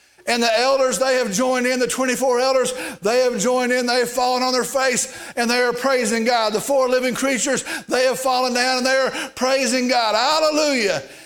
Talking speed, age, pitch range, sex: 210 wpm, 50-69, 250-285 Hz, male